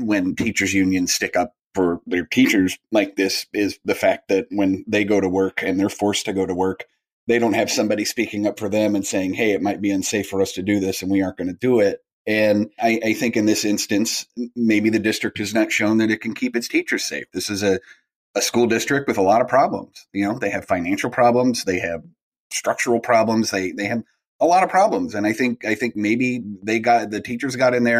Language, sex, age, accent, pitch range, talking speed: English, male, 30-49, American, 100-120 Hz, 245 wpm